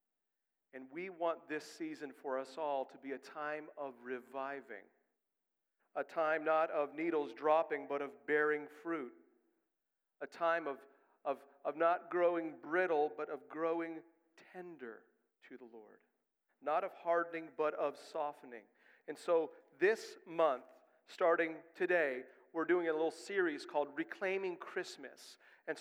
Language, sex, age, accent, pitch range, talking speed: English, male, 40-59, American, 155-245 Hz, 140 wpm